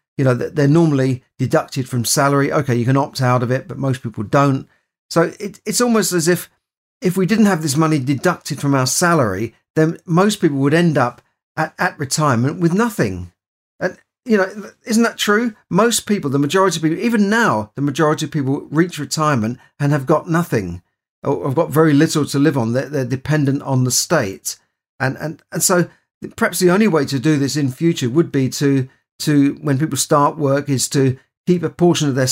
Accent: British